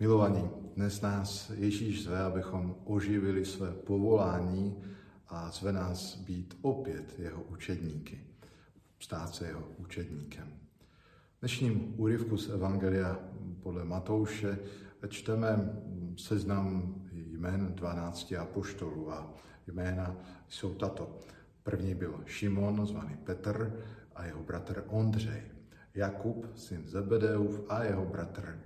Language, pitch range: Slovak, 90-105 Hz